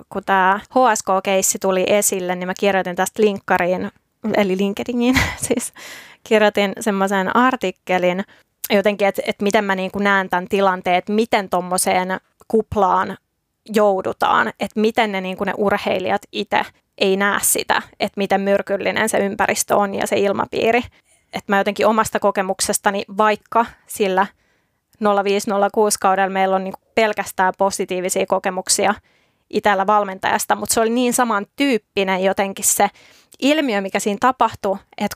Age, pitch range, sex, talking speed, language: 20-39, 195-215 Hz, female, 135 wpm, Finnish